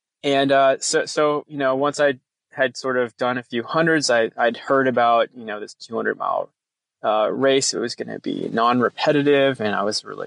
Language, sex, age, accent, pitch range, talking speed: English, male, 20-39, American, 115-135 Hz, 215 wpm